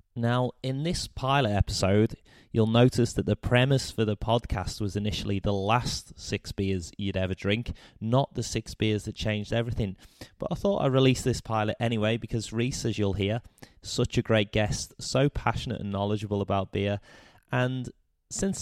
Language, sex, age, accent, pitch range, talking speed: English, male, 20-39, British, 95-120 Hz, 175 wpm